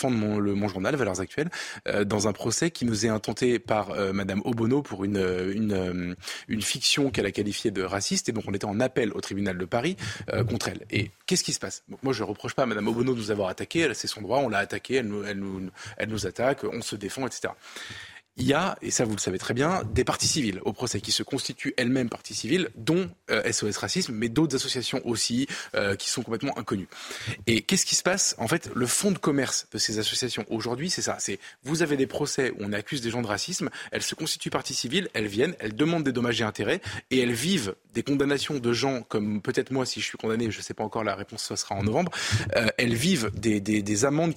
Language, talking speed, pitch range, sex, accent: French, 255 wpm, 105-135 Hz, male, French